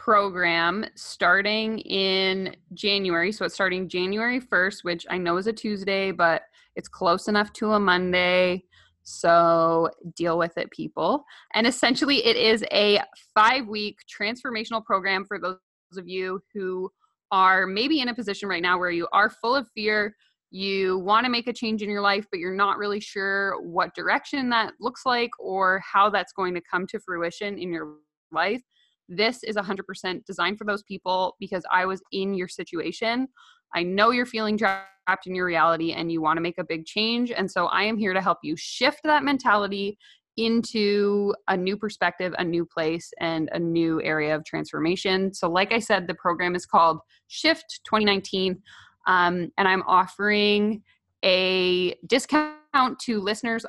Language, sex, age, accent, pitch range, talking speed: English, female, 20-39, American, 180-215 Hz, 175 wpm